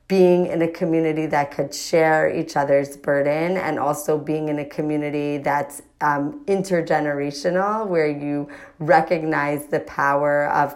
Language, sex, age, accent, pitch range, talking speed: English, female, 30-49, American, 145-165 Hz, 140 wpm